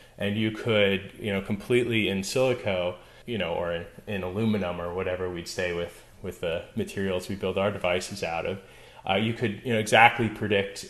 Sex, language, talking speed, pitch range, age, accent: male, English, 195 wpm, 95-115 Hz, 20-39, American